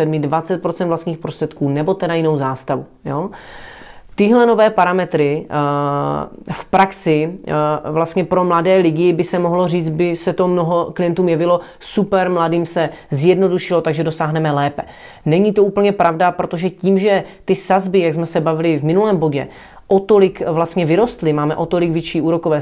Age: 30-49